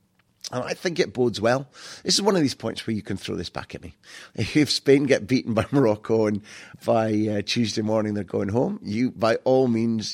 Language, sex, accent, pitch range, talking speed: English, male, British, 100-125 Hz, 225 wpm